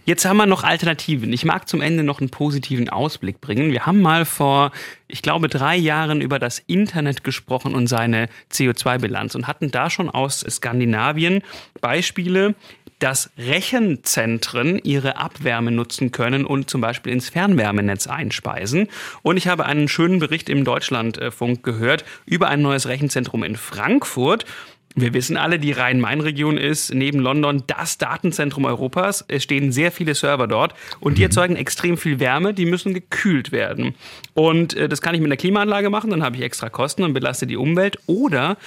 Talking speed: 170 wpm